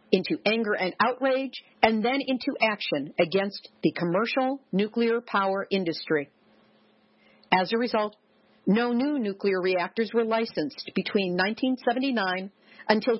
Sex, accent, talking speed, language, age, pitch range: female, American, 120 wpm, English, 50-69, 175-245 Hz